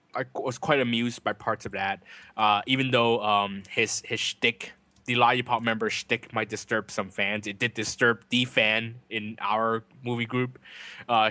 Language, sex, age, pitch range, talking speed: English, male, 20-39, 105-130 Hz, 175 wpm